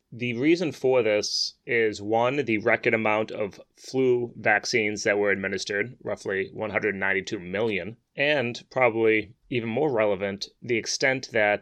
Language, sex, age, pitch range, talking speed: English, male, 30-49, 100-120 Hz, 135 wpm